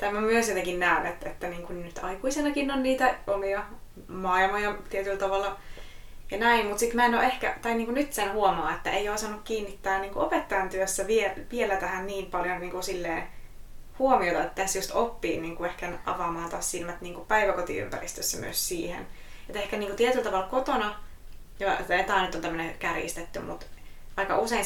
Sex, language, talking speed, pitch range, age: female, Finnish, 195 wpm, 180-210 Hz, 20-39